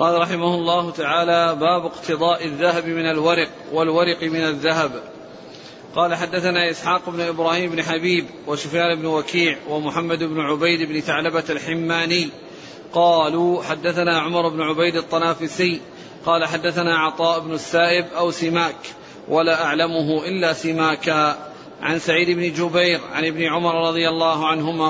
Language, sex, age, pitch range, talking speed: Arabic, male, 40-59, 160-170 Hz, 135 wpm